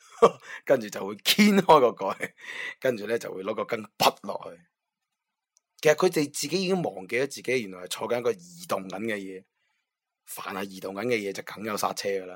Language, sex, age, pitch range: Chinese, male, 20-39, 100-135 Hz